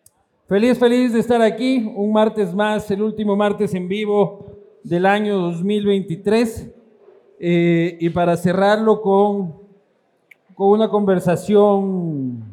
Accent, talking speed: Mexican, 115 wpm